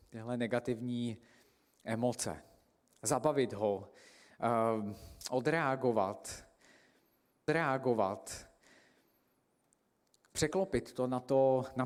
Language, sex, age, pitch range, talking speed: Slovak, male, 50-69, 120-140 Hz, 55 wpm